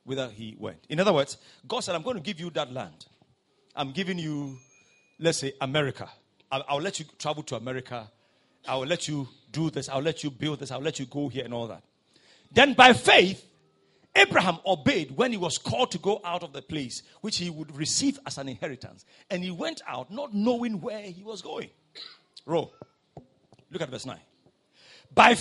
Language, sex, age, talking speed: English, male, 50-69, 200 wpm